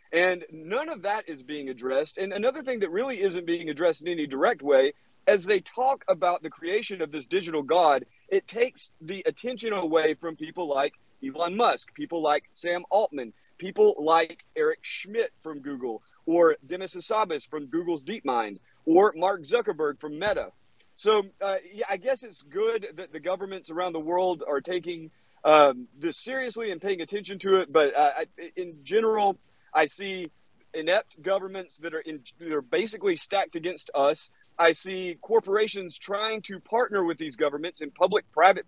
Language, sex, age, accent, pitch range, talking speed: English, male, 40-59, American, 160-210 Hz, 170 wpm